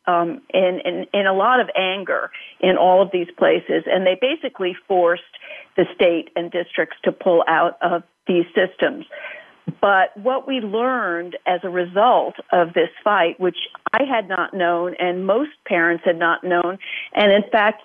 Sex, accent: female, American